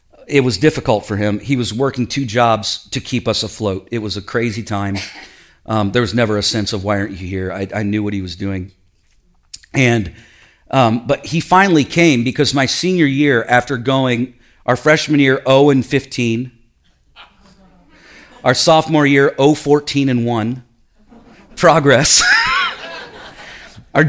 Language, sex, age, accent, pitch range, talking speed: English, male, 40-59, American, 105-145 Hz, 160 wpm